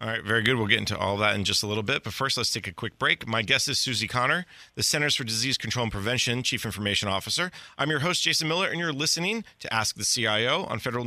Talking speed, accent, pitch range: 270 wpm, American, 110-155 Hz